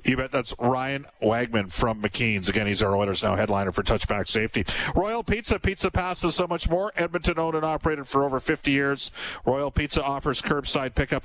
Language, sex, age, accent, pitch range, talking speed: English, male, 50-69, American, 120-145 Hz, 190 wpm